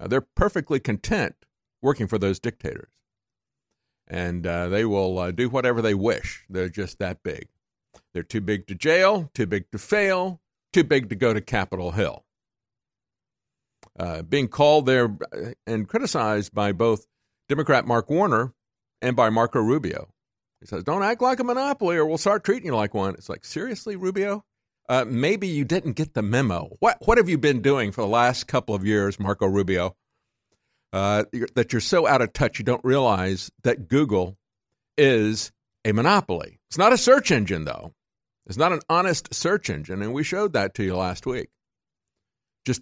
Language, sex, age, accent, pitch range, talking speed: English, male, 50-69, American, 100-135 Hz, 180 wpm